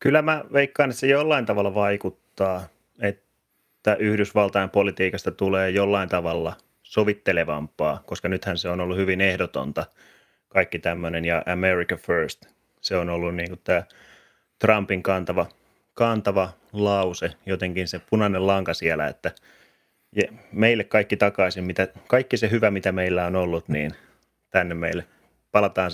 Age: 30-49